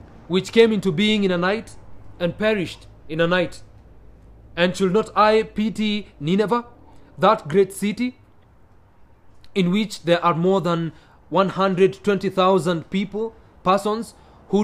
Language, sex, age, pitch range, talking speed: English, male, 30-49, 145-195 Hz, 125 wpm